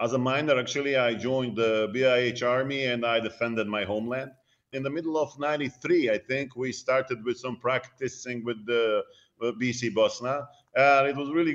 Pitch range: 120-140 Hz